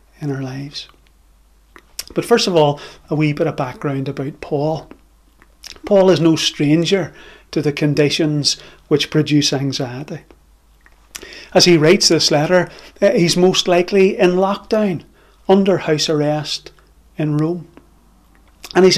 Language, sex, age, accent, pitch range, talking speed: English, male, 30-49, British, 150-190 Hz, 130 wpm